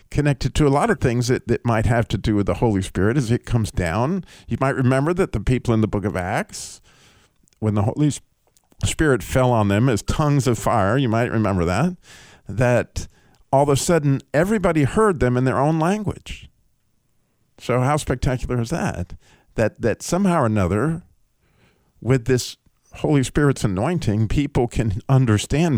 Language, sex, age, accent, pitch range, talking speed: English, male, 50-69, American, 110-145 Hz, 175 wpm